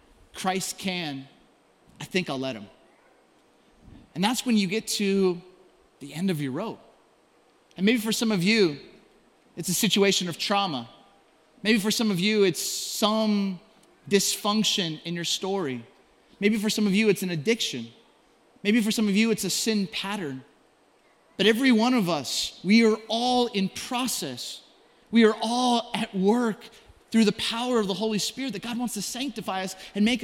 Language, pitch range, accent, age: English, 190-235 Hz, American, 30-49